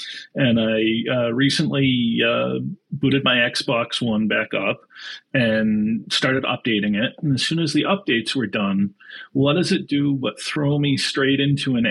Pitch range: 110-135 Hz